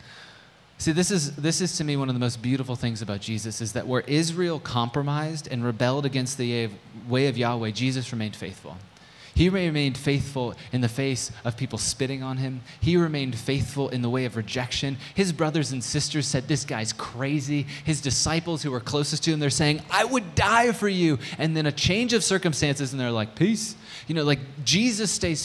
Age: 20-39